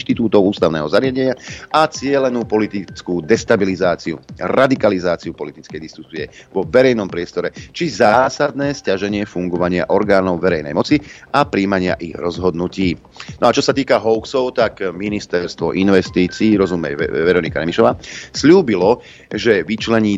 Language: Slovak